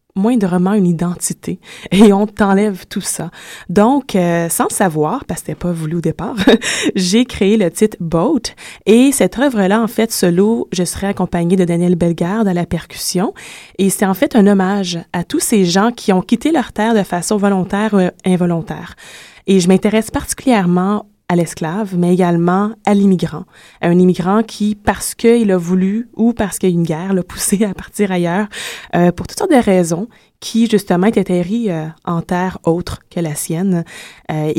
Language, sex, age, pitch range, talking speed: French, female, 20-39, 175-215 Hz, 185 wpm